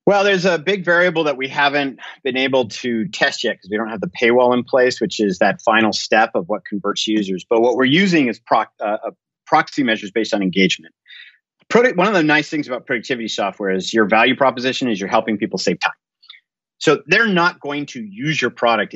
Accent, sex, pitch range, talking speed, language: American, male, 100-135 Hz, 220 wpm, English